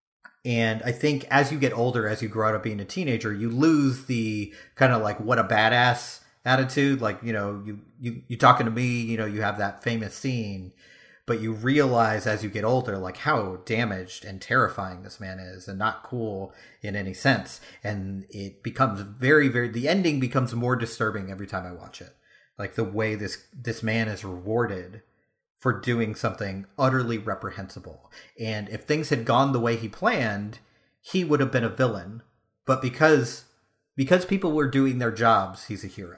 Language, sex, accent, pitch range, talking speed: English, male, American, 105-130 Hz, 190 wpm